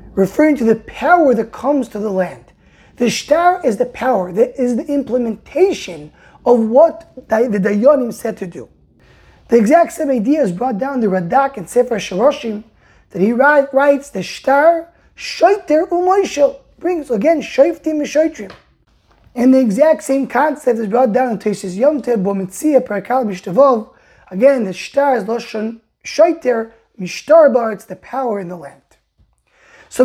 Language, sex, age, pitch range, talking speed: English, male, 20-39, 210-285 Hz, 160 wpm